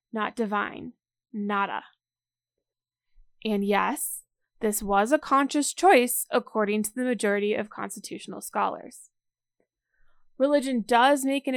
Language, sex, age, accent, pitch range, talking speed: English, female, 20-39, American, 205-250 Hz, 110 wpm